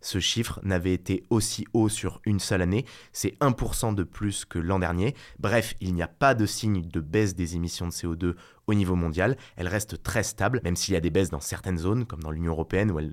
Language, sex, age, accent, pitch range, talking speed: French, male, 20-39, French, 90-115 Hz, 240 wpm